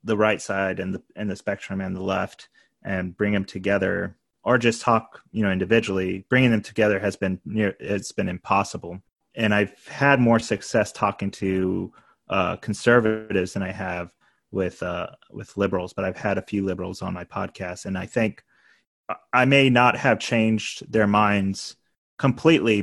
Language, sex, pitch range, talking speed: English, male, 95-110 Hz, 175 wpm